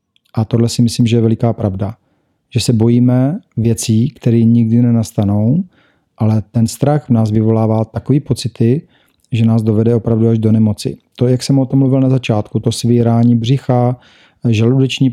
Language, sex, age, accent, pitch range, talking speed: Czech, male, 40-59, native, 115-130 Hz, 165 wpm